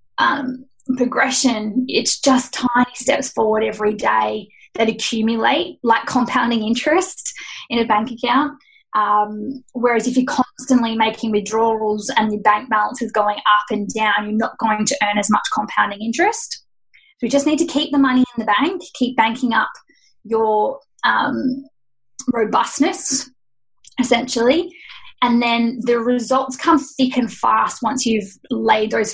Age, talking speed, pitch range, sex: 20-39, 150 wpm, 215-265 Hz, female